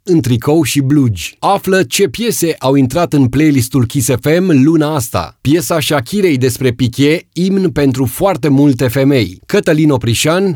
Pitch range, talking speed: 135-170 Hz, 150 wpm